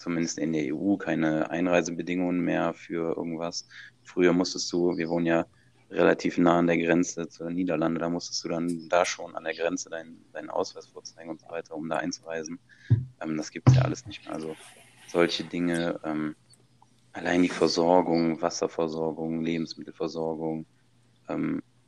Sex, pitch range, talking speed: male, 80-90 Hz, 165 wpm